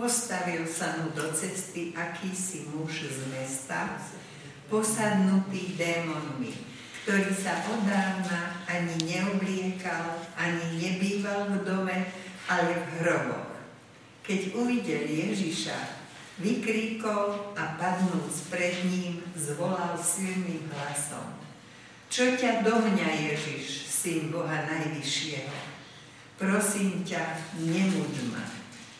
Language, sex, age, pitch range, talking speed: Slovak, female, 60-79, 160-195 Hz, 95 wpm